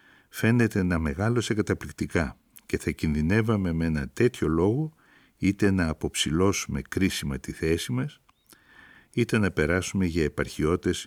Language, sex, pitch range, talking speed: Greek, male, 75-110 Hz, 125 wpm